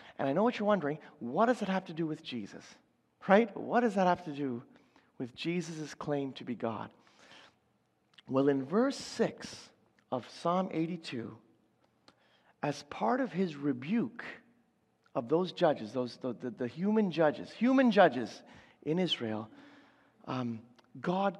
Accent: American